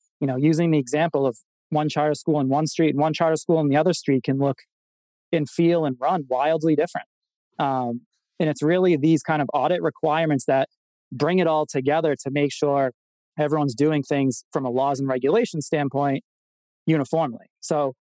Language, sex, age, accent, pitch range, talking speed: English, male, 20-39, American, 135-160 Hz, 185 wpm